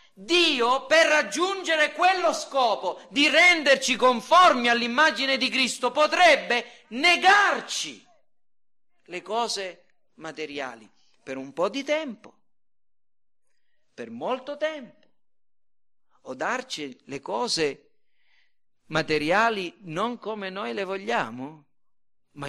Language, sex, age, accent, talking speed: Italian, male, 40-59, native, 95 wpm